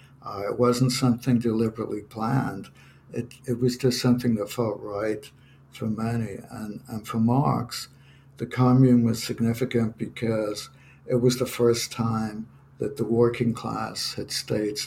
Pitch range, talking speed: 115-130 Hz, 145 wpm